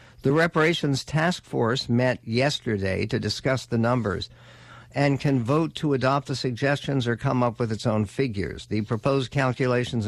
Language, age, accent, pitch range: English, 60-79, American, 115-135 Hz